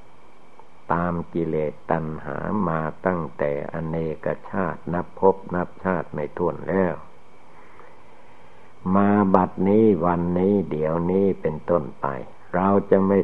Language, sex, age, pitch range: Thai, male, 60-79, 80-95 Hz